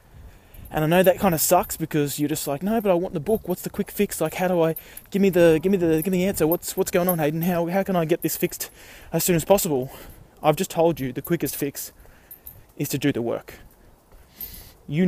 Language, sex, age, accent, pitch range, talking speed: English, male, 20-39, Australian, 130-175 Hz, 255 wpm